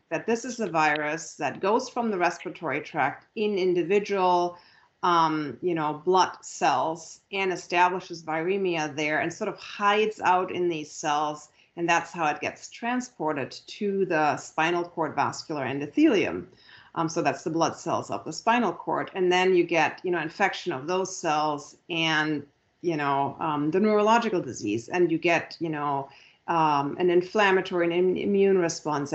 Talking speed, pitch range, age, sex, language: 165 wpm, 155-195 Hz, 40-59, female, English